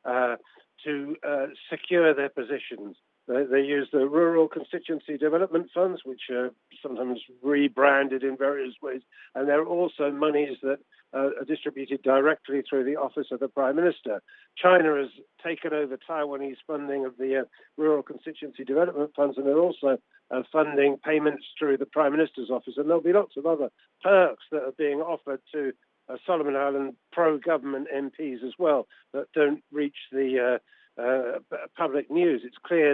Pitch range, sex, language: 135-165 Hz, male, English